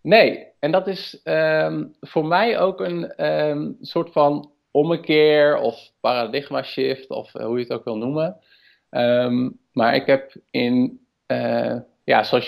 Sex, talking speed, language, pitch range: male, 155 wpm, Dutch, 120-155 Hz